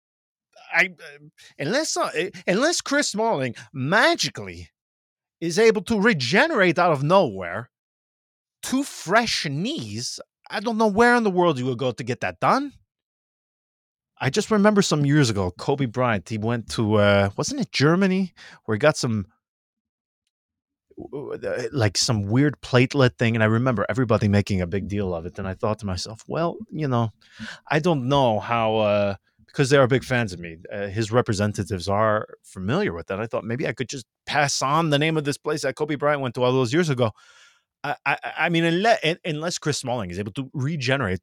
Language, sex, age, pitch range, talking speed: English, male, 30-49, 110-160 Hz, 185 wpm